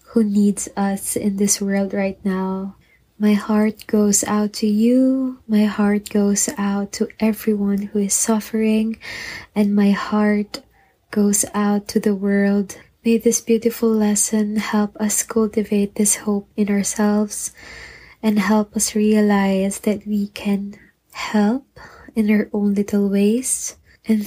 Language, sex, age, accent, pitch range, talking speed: English, female, 20-39, Filipino, 200-220 Hz, 140 wpm